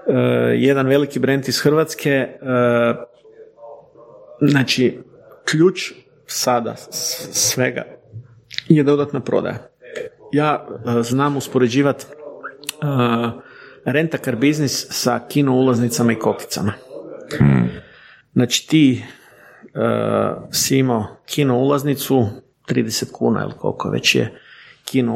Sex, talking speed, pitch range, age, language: male, 100 wpm, 115-145 Hz, 50-69, Croatian